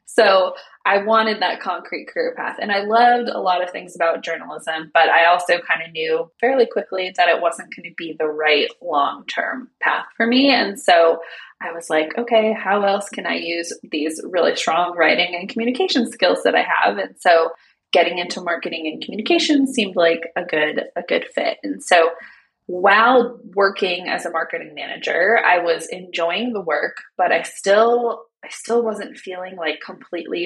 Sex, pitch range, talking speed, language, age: female, 175-245 Hz, 180 wpm, English, 20-39